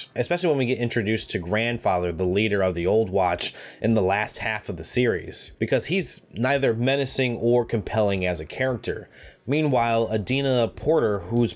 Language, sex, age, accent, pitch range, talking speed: English, male, 20-39, American, 100-140 Hz, 170 wpm